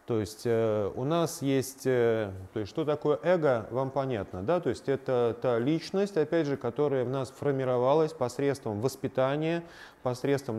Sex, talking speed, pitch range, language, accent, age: male, 165 wpm, 115-150 Hz, Russian, native, 30-49